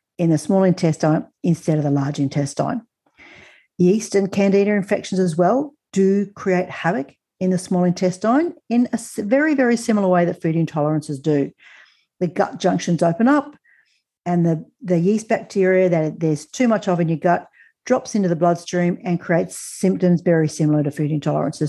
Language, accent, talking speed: English, Australian, 170 wpm